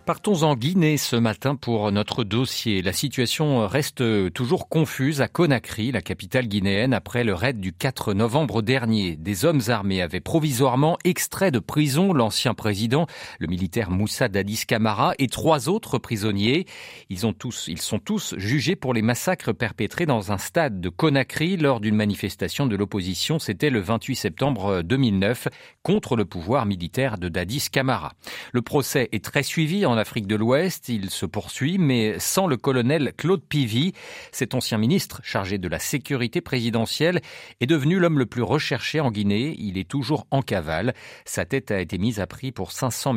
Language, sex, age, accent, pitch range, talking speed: French, male, 40-59, French, 105-145 Hz, 175 wpm